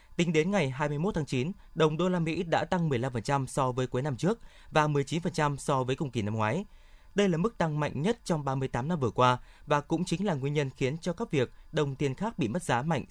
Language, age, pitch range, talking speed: Vietnamese, 20-39, 125-175 Hz, 245 wpm